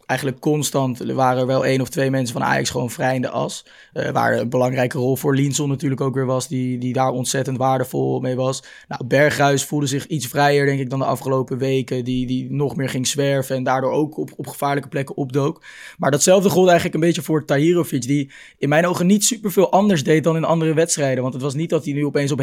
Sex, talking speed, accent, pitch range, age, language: male, 240 wpm, Dutch, 130-150 Hz, 20-39, Dutch